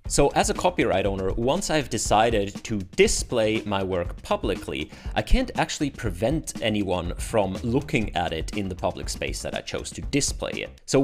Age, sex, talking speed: 30-49, male, 180 wpm